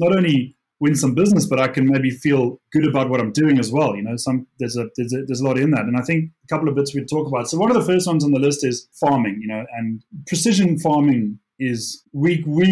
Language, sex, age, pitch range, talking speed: English, male, 20-39, 120-145 Hz, 275 wpm